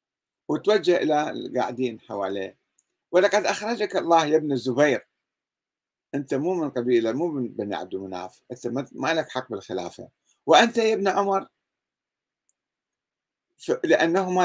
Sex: male